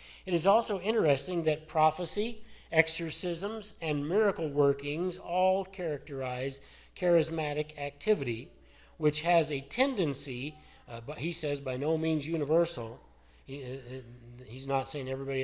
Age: 40-59